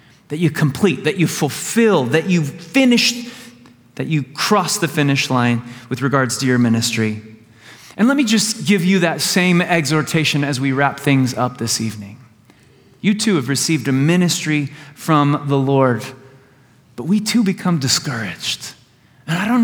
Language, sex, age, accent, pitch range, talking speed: English, male, 30-49, American, 130-185 Hz, 160 wpm